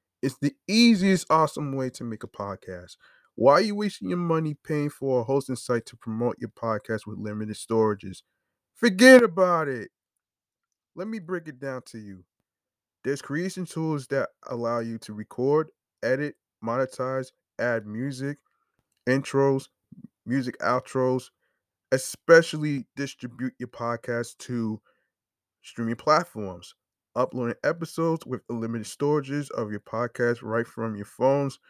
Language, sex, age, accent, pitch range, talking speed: English, male, 20-39, American, 115-150 Hz, 135 wpm